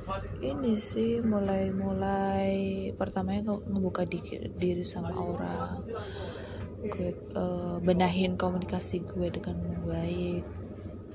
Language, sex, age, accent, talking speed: English, female, 20-39, Indonesian, 85 wpm